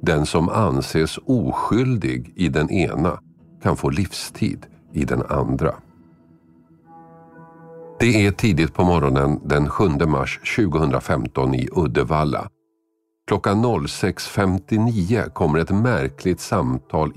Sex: male